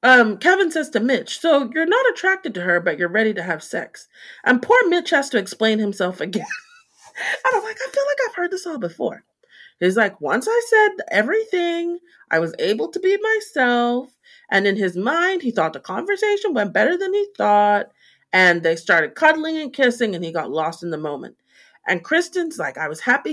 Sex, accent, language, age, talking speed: female, American, English, 30-49, 205 wpm